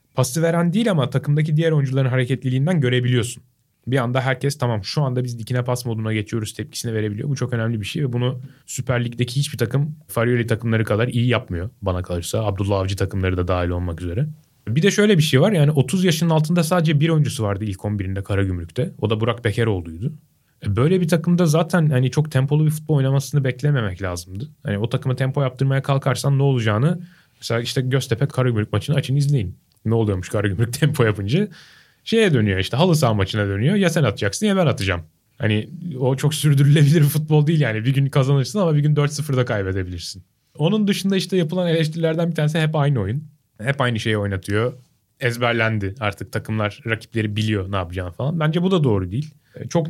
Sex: male